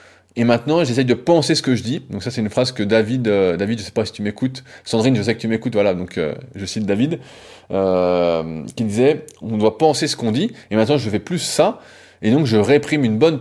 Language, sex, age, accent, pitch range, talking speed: French, male, 20-39, French, 105-140 Hz, 255 wpm